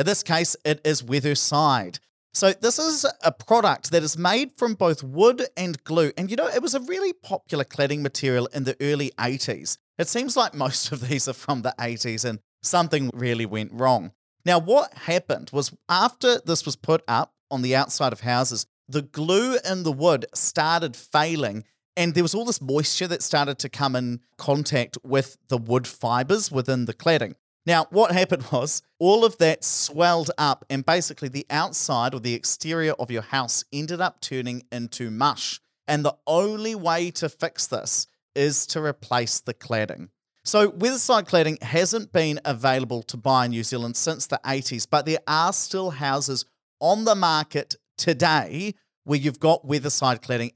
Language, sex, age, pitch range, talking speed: English, male, 30-49, 130-175 Hz, 180 wpm